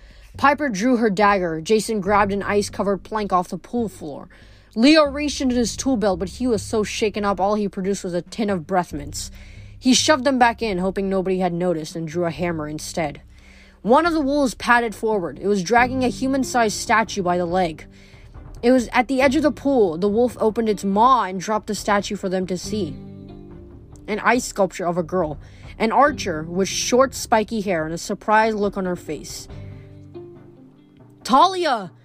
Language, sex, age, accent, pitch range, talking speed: English, female, 20-39, American, 180-245 Hz, 195 wpm